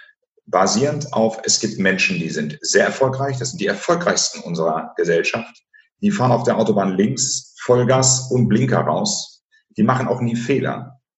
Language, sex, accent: German, male, German